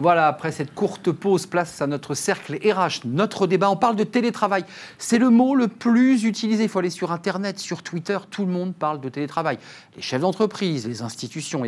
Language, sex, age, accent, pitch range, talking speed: French, male, 40-59, French, 120-175 Hz, 205 wpm